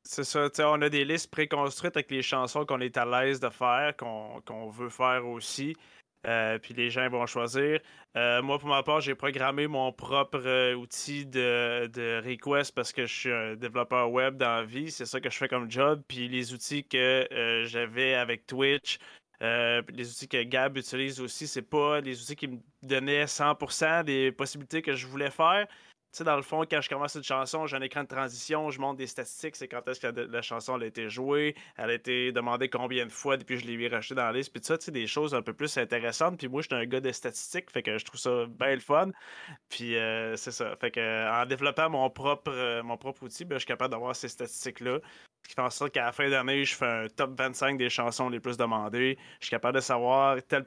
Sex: male